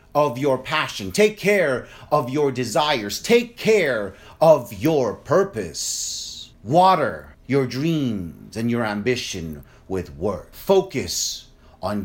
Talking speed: 115 wpm